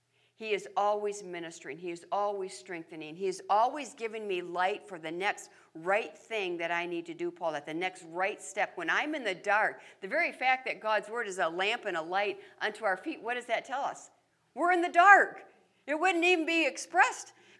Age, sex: 60-79, female